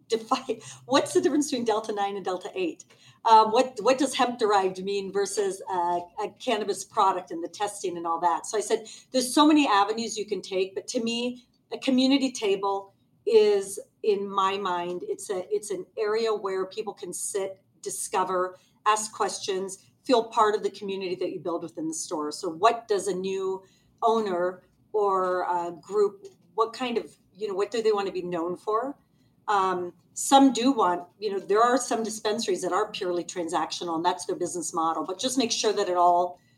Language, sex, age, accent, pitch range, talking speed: English, female, 40-59, American, 185-250 Hz, 195 wpm